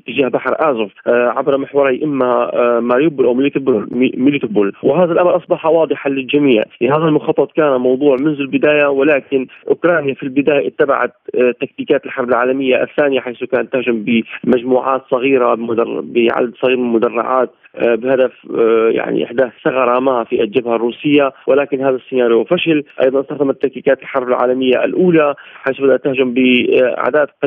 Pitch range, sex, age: 125-150 Hz, male, 30-49